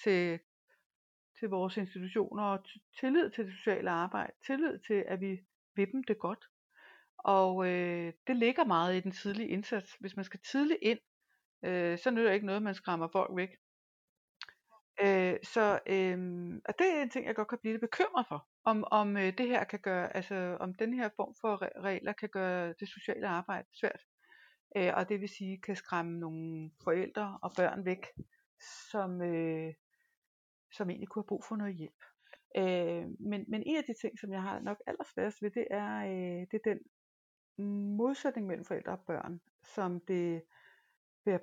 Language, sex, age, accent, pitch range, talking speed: Danish, female, 60-79, native, 175-215 Hz, 180 wpm